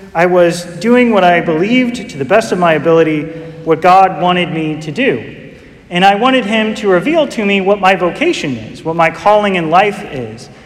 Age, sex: 30-49, male